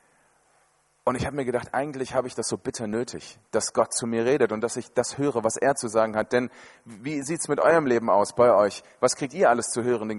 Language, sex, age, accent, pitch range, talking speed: German, male, 30-49, German, 115-155 Hz, 260 wpm